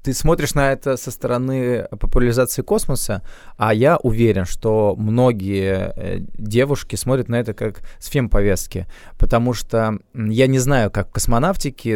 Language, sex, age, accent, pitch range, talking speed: Russian, male, 20-39, native, 105-125 Hz, 140 wpm